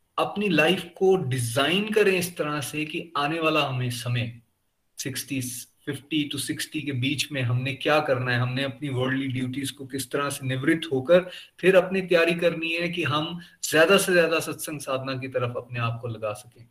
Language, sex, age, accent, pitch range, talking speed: Hindi, male, 30-49, native, 140-200 Hz, 195 wpm